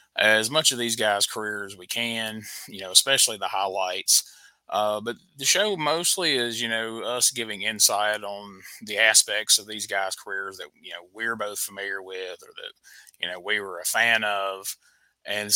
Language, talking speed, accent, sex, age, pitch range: English, 185 wpm, American, male, 30-49, 100-120 Hz